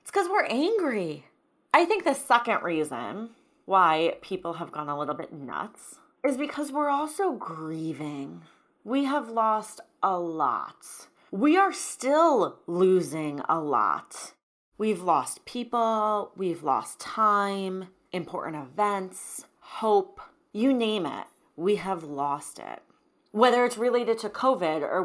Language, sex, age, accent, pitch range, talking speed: English, female, 30-49, American, 170-240 Hz, 130 wpm